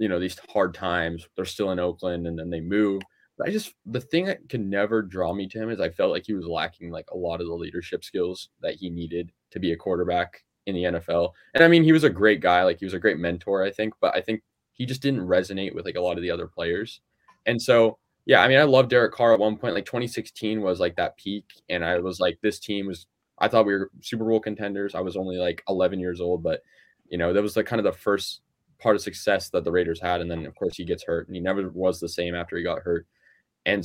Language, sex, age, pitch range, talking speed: English, male, 20-39, 90-110 Hz, 275 wpm